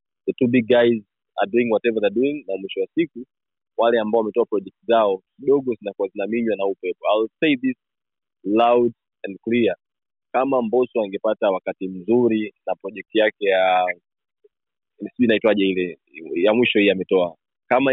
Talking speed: 155 wpm